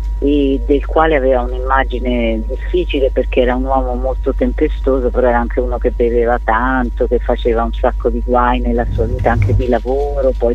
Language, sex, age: Italian, female, 40-59